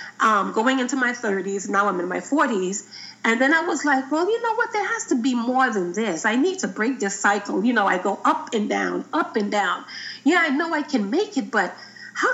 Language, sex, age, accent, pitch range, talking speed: English, female, 30-49, American, 215-310 Hz, 250 wpm